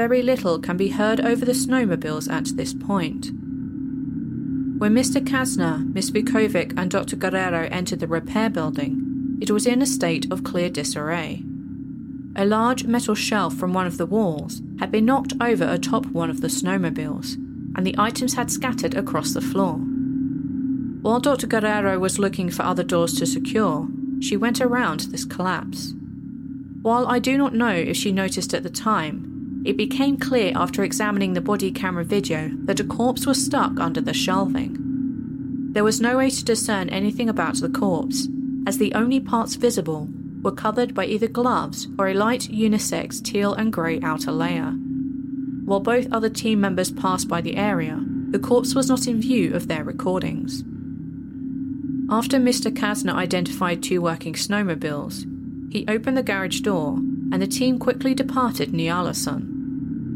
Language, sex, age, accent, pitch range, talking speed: English, female, 30-49, British, 220-265 Hz, 165 wpm